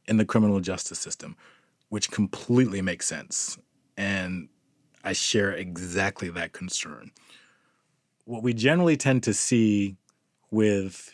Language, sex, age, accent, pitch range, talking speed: English, male, 30-49, American, 95-115 Hz, 120 wpm